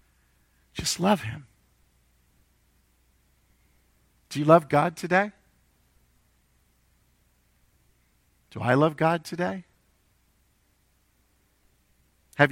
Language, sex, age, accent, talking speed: English, male, 50-69, American, 65 wpm